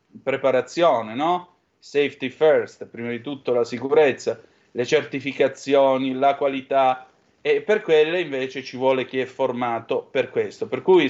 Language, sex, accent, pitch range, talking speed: Italian, male, native, 130-200 Hz, 140 wpm